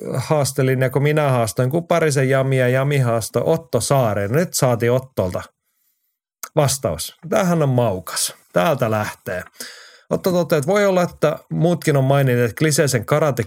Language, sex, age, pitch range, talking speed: Finnish, male, 30-49, 110-140 Hz, 135 wpm